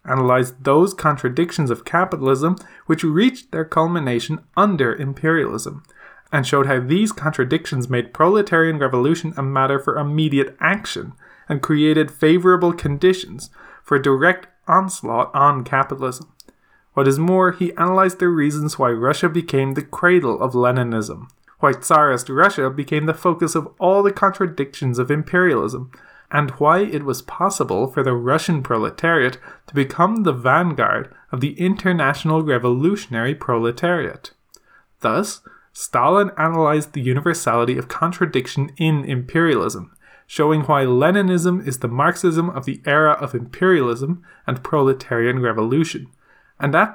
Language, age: English, 20-39